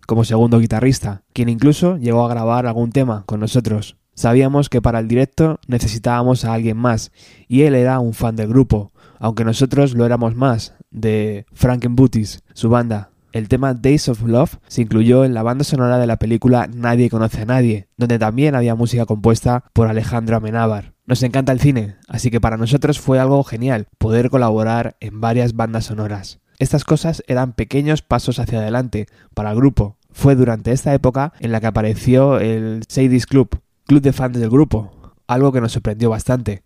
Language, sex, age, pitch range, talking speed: Spanish, male, 20-39, 110-130 Hz, 185 wpm